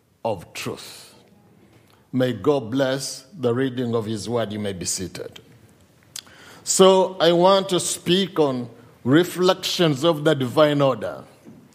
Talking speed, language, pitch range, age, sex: 130 wpm, English, 145-175 Hz, 50-69, male